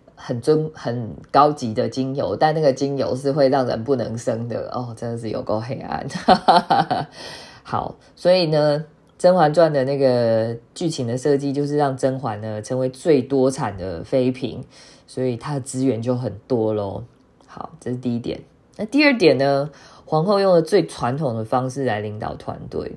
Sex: female